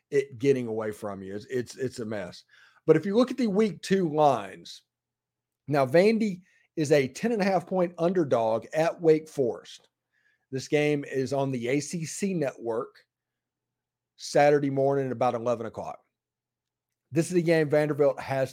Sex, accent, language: male, American, English